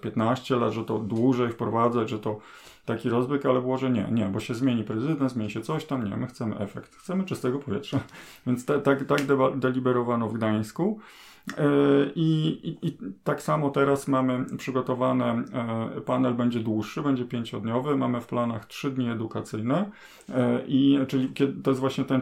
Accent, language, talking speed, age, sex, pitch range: native, Polish, 175 wpm, 30-49, male, 115-135 Hz